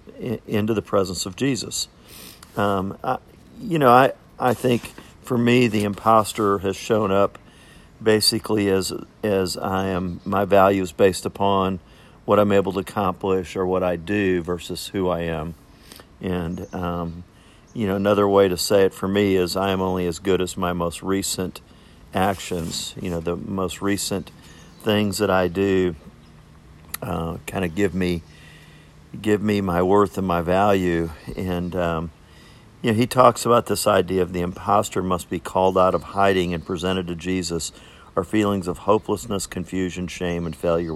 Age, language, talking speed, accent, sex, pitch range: 50-69, English, 170 wpm, American, male, 90-100 Hz